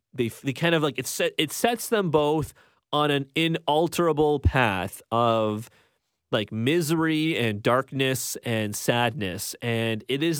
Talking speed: 145 wpm